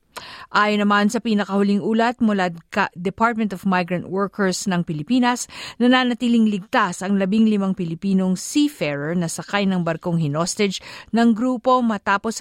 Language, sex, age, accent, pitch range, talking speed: Filipino, female, 50-69, native, 180-235 Hz, 130 wpm